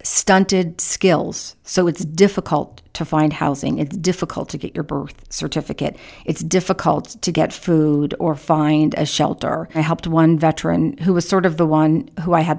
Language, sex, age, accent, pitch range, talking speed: English, female, 40-59, American, 160-195 Hz, 175 wpm